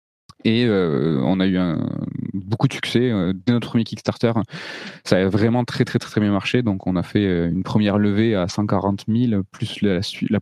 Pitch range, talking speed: 95-115 Hz, 200 wpm